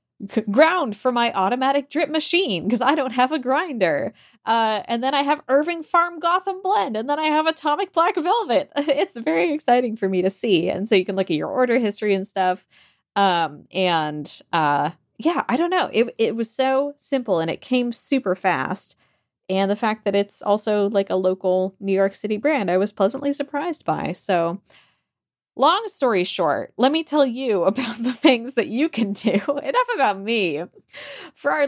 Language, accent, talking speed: English, American, 190 wpm